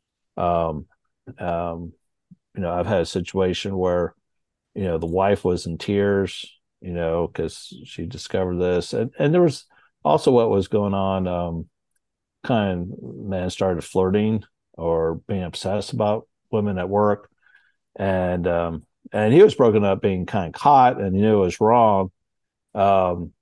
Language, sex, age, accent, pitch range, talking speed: English, male, 50-69, American, 90-110 Hz, 160 wpm